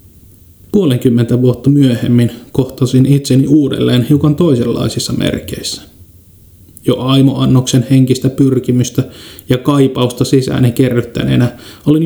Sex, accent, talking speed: male, native, 90 wpm